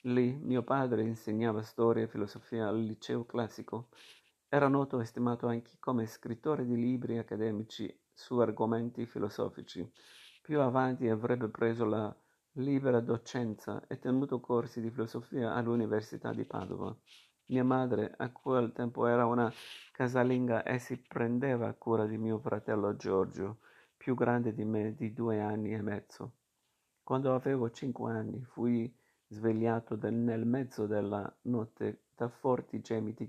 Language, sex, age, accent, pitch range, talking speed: Italian, male, 50-69, native, 110-120 Hz, 140 wpm